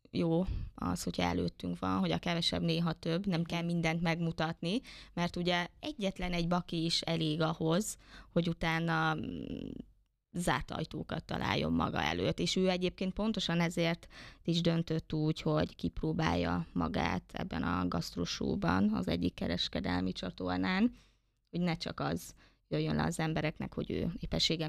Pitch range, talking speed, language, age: 155-175 Hz, 140 wpm, Hungarian, 20-39